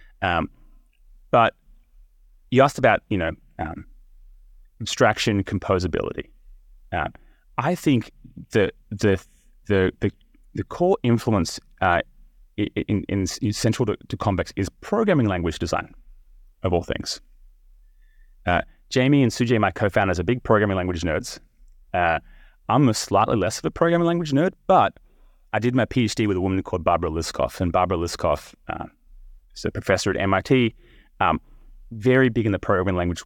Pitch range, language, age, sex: 90-120 Hz, English, 30-49, male